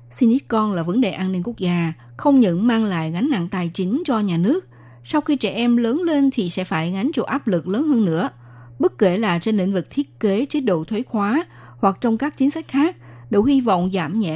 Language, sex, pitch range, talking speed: Vietnamese, female, 175-245 Hz, 245 wpm